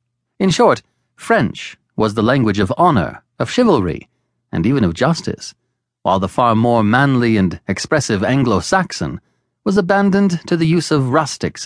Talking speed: 150 wpm